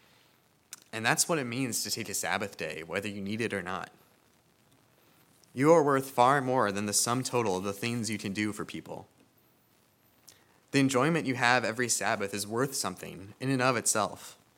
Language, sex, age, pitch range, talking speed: English, male, 20-39, 105-130 Hz, 190 wpm